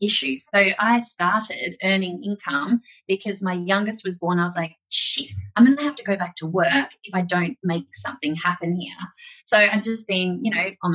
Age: 20-39